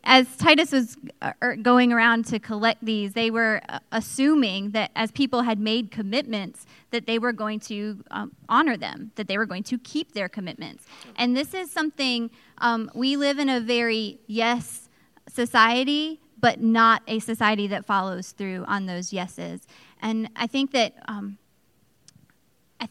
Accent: American